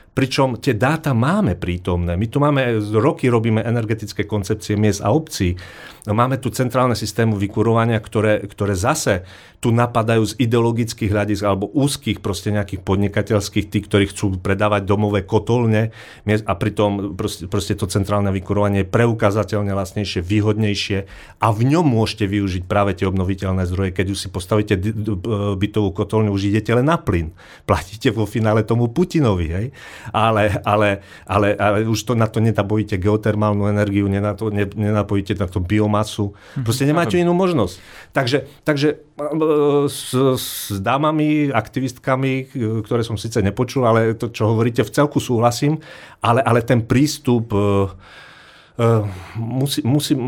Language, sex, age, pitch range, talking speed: Slovak, male, 40-59, 100-125 Hz, 140 wpm